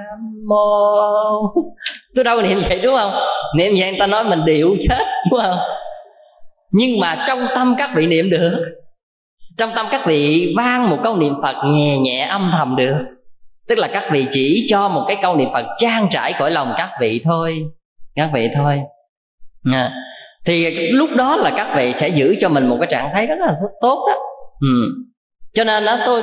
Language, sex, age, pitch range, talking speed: Vietnamese, female, 20-39, 145-220 Hz, 190 wpm